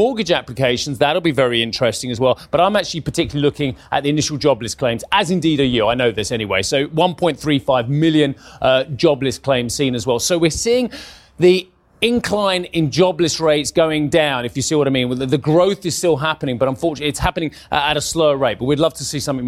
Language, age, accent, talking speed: English, 30-49, British, 220 wpm